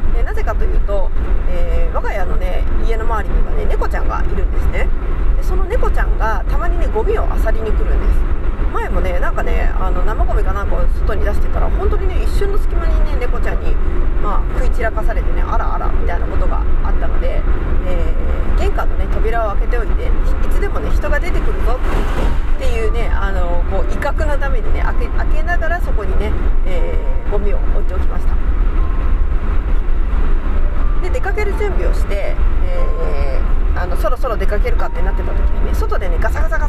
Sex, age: female, 40-59